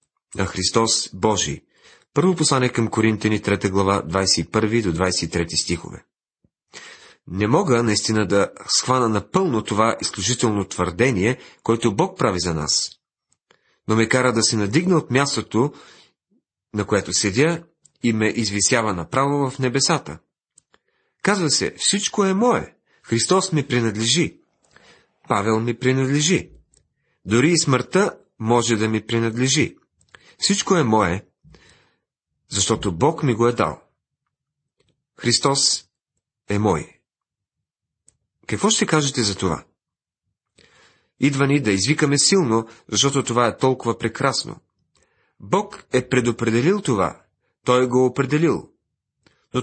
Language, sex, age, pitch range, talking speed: Bulgarian, male, 40-59, 105-140 Hz, 115 wpm